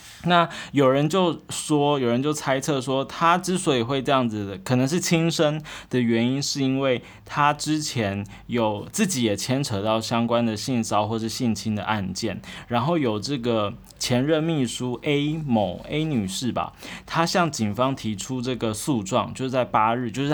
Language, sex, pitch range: Chinese, male, 110-145 Hz